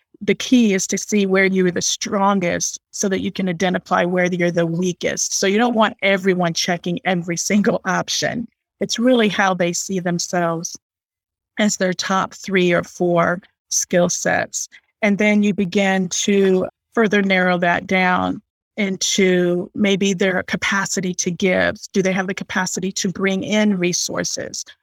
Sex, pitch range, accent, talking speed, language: female, 180-205 Hz, American, 160 wpm, English